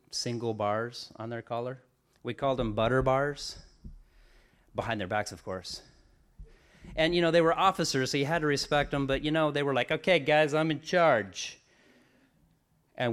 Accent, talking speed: American, 180 wpm